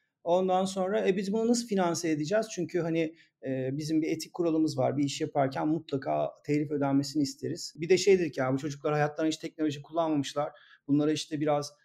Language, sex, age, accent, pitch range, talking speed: Turkish, male, 40-59, native, 140-185 Hz, 185 wpm